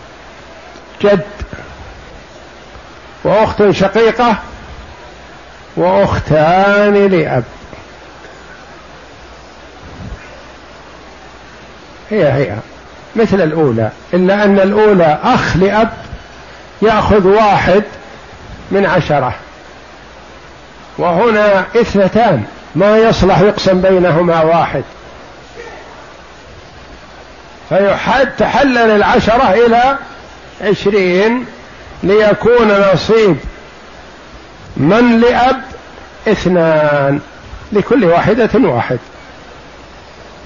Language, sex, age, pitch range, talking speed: Arabic, male, 50-69, 185-235 Hz, 55 wpm